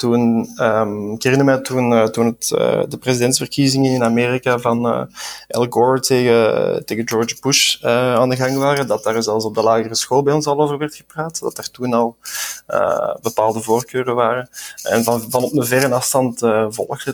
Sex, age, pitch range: male, 20-39, 120-140 Hz